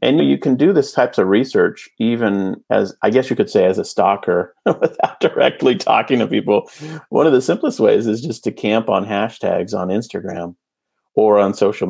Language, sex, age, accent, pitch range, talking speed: English, male, 30-49, American, 95-110 Hz, 200 wpm